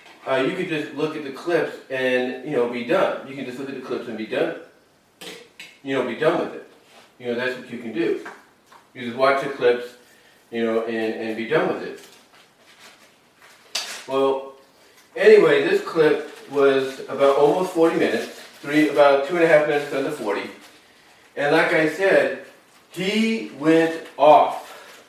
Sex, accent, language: male, American, English